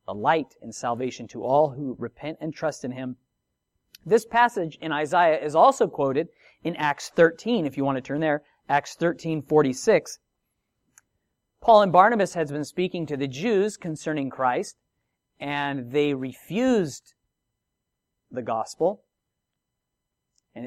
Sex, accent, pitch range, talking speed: male, American, 130-180 Hz, 140 wpm